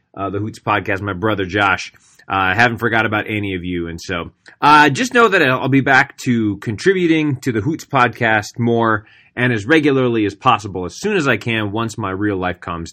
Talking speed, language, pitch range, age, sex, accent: 215 wpm, English, 105-140 Hz, 20-39, male, American